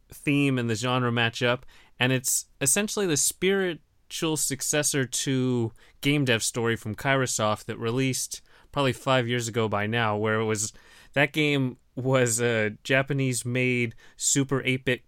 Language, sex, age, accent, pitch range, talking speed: English, male, 20-39, American, 115-135 Hz, 145 wpm